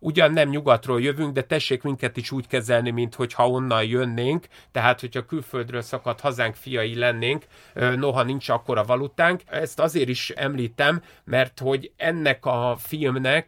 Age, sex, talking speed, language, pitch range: 30-49, male, 155 wpm, Hungarian, 125-155 Hz